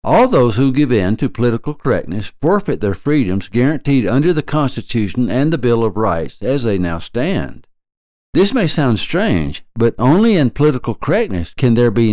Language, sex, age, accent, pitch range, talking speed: English, male, 60-79, American, 95-130 Hz, 180 wpm